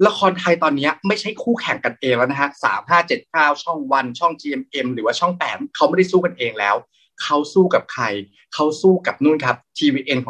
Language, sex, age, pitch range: Thai, male, 30-49, 145-195 Hz